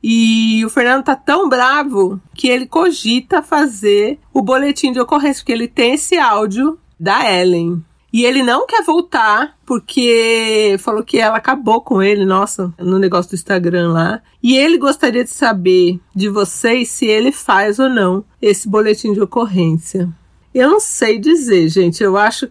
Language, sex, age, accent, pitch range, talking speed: Portuguese, female, 40-59, Brazilian, 195-275 Hz, 165 wpm